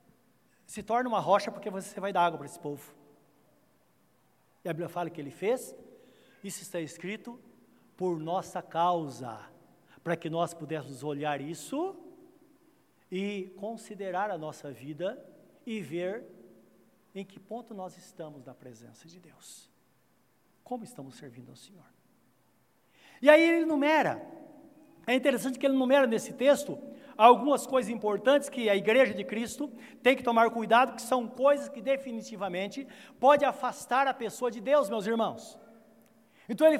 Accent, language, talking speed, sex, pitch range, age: Brazilian, Portuguese, 145 wpm, male, 195-285 Hz, 60-79